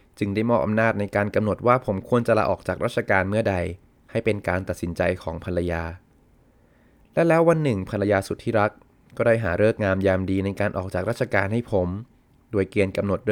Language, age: Thai, 20-39